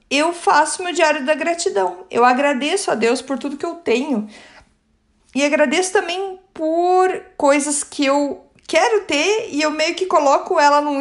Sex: female